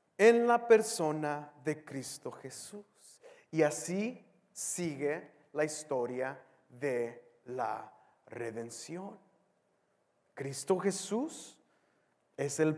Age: 40-59